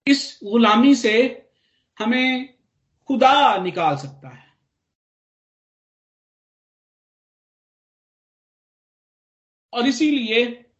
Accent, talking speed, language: native, 55 wpm, Hindi